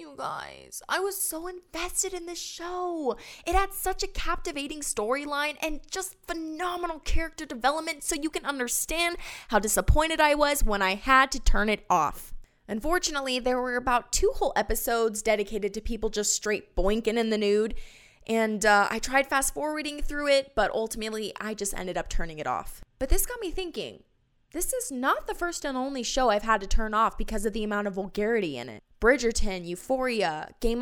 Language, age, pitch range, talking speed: English, 20-39, 215-310 Hz, 190 wpm